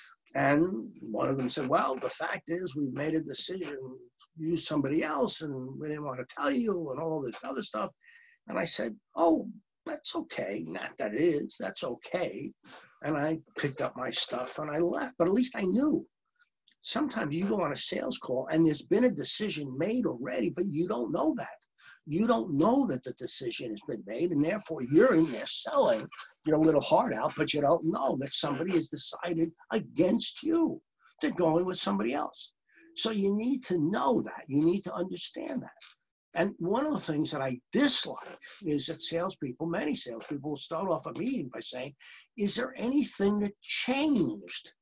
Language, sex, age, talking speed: English, male, 50-69, 195 wpm